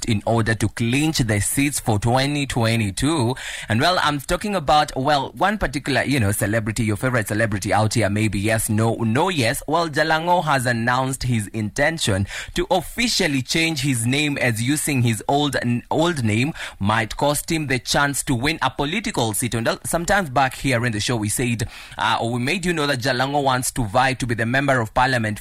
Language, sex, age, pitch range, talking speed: English, male, 20-39, 115-145 Hz, 195 wpm